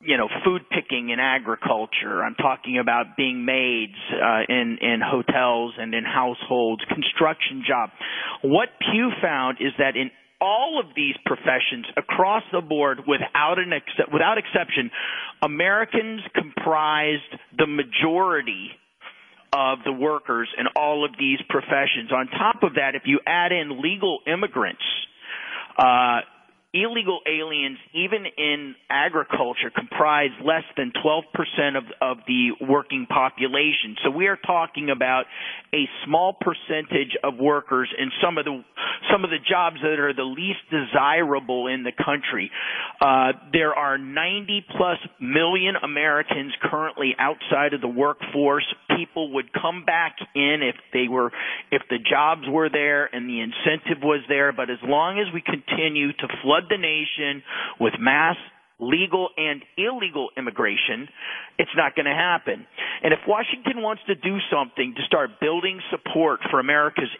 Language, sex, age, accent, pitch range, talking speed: English, male, 40-59, American, 135-170 Hz, 145 wpm